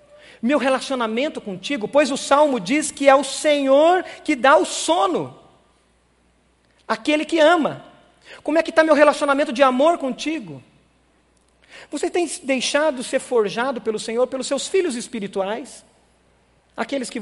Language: Portuguese